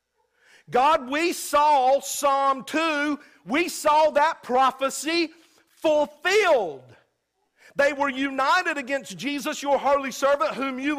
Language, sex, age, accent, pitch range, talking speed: English, male, 50-69, American, 260-325 Hz, 110 wpm